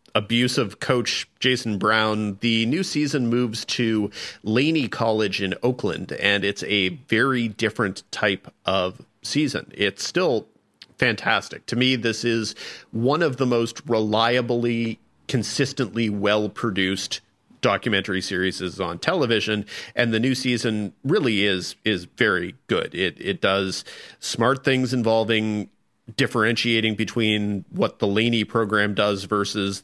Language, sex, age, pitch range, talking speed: English, male, 40-59, 100-125 Hz, 130 wpm